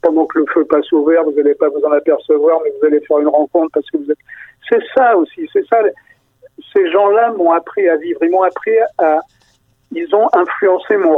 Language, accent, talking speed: French, French, 215 wpm